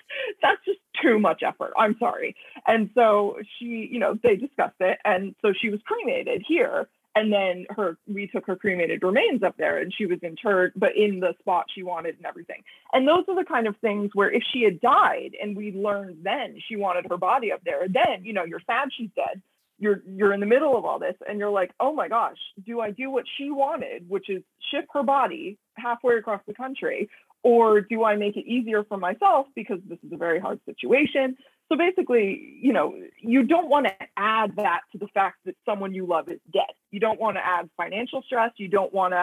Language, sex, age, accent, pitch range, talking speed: English, female, 20-39, American, 195-255 Hz, 225 wpm